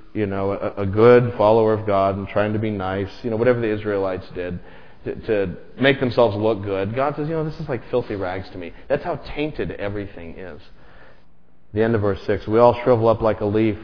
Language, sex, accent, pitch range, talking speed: English, male, American, 95-125 Hz, 230 wpm